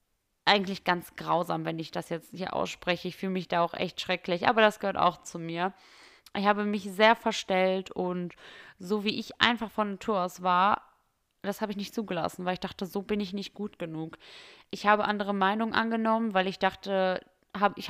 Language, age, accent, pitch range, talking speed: German, 20-39, German, 180-205 Hz, 200 wpm